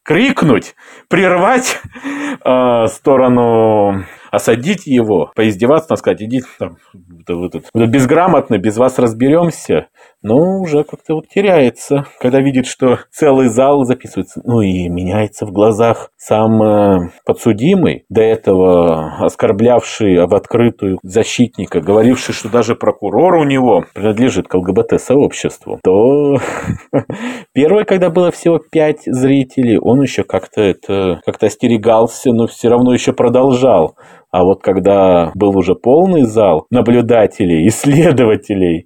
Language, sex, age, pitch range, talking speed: Russian, male, 30-49, 95-140 Hz, 120 wpm